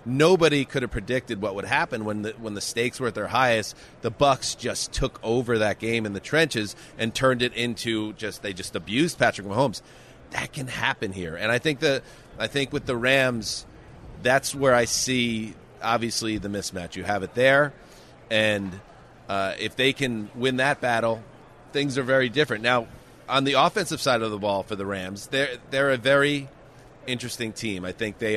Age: 30-49